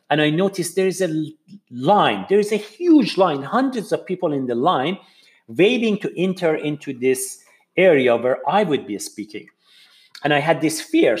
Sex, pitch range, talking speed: male, 140-205 Hz, 180 wpm